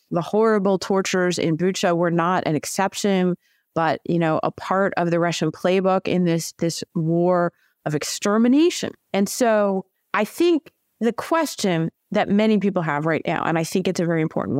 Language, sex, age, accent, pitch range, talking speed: English, female, 30-49, American, 165-205 Hz, 175 wpm